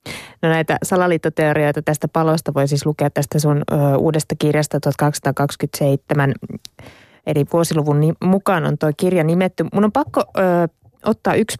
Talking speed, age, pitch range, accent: 145 wpm, 20-39, 145-175 Hz, native